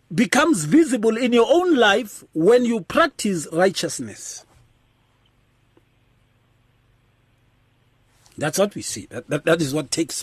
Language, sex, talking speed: English, male, 115 wpm